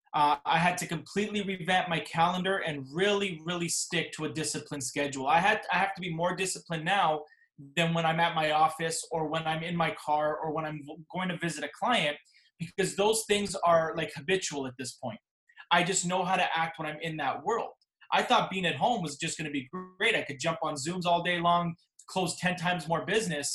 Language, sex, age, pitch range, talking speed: English, male, 20-39, 150-180 Hz, 225 wpm